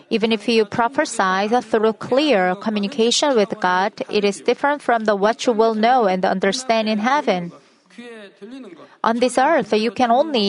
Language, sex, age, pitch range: Korean, female, 30-49, 200-245 Hz